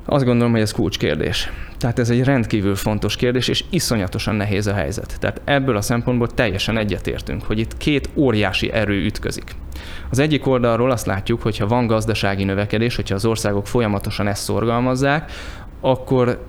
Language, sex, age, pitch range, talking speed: Hungarian, male, 20-39, 105-130 Hz, 165 wpm